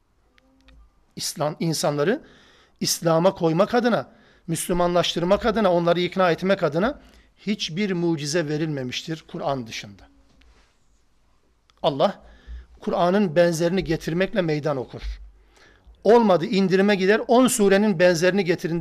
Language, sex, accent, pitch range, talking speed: Turkish, male, native, 170-210 Hz, 95 wpm